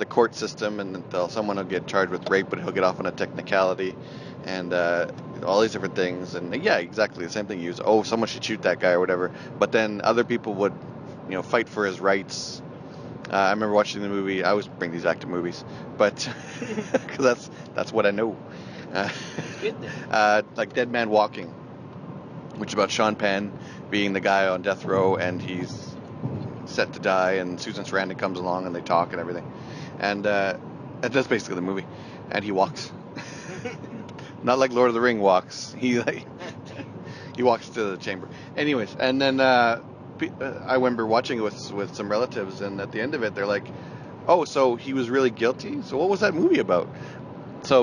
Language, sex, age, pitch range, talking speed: English, male, 30-49, 95-125 Hz, 200 wpm